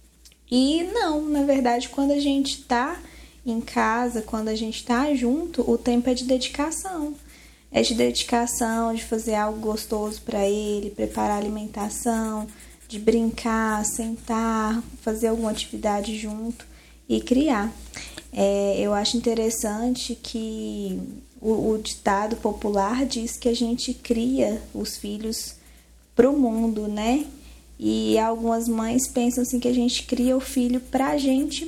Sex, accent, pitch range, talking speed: female, Brazilian, 215-255 Hz, 135 wpm